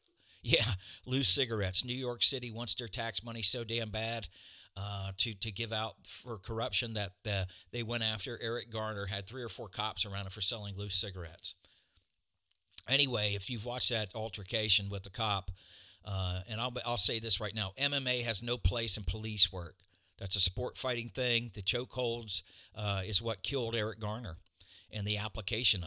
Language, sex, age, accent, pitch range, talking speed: English, male, 50-69, American, 95-120 Hz, 180 wpm